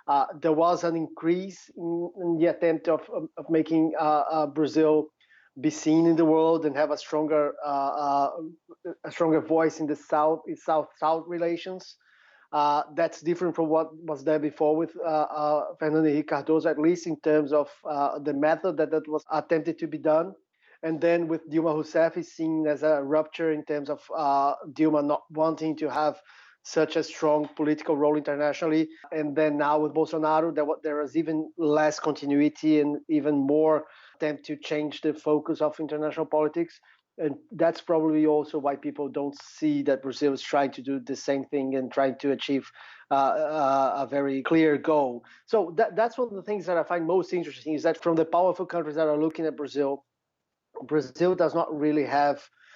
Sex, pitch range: male, 150-165 Hz